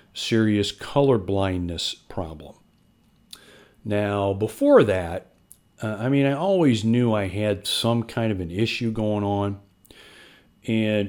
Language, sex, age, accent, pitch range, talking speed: English, male, 40-59, American, 105-135 Hz, 120 wpm